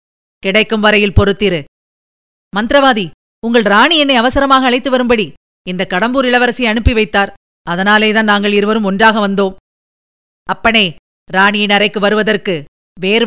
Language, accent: Tamil, native